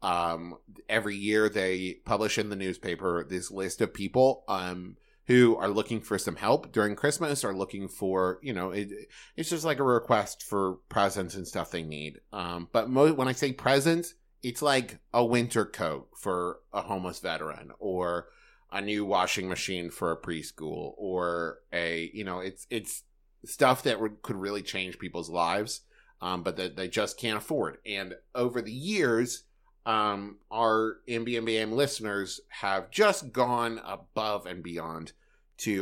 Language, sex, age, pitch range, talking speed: English, male, 30-49, 90-120 Hz, 165 wpm